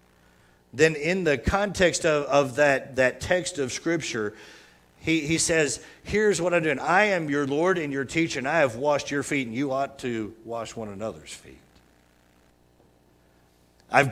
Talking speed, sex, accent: 170 wpm, male, American